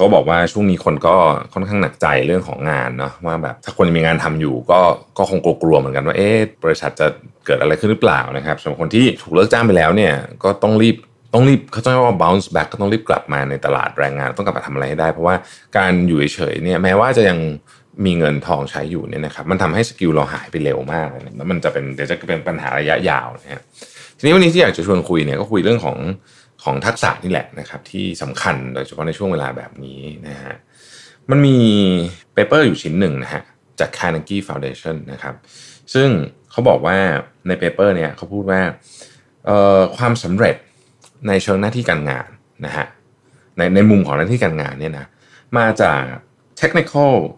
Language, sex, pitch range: Thai, male, 75-110 Hz